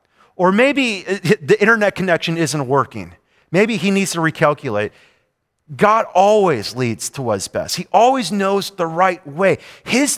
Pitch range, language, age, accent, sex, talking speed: 140-215 Hz, English, 30-49, American, male, 145 wpm